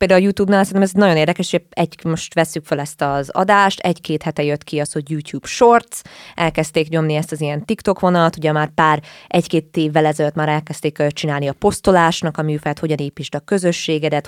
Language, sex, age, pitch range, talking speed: Hungarian, female, 20-39, 150-175 Hz, 195 wpm